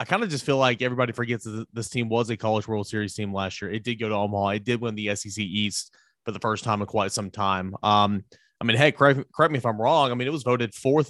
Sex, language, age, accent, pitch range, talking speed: male, English, 30-49, American, 105-125 Hz, 290 wpm